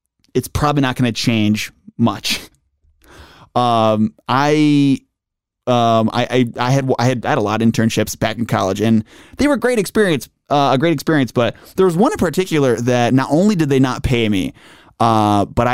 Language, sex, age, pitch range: English, male, 20-39, 115-145 Hz